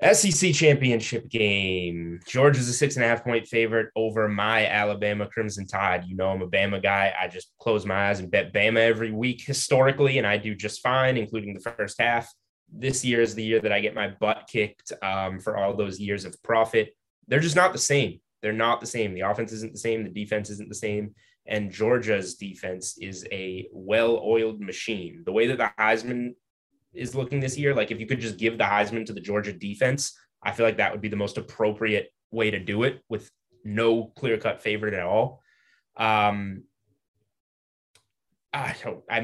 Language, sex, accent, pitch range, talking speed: English, male, American, 100-120 Hz, 200 wpm